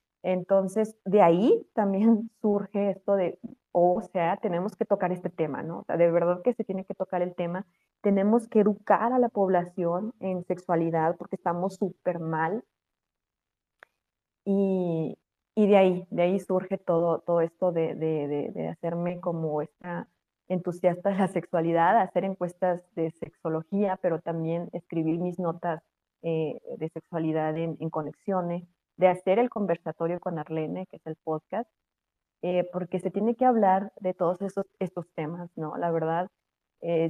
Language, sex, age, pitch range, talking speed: Spanish, female, 30-49, 165-195 Hz, 160 wpm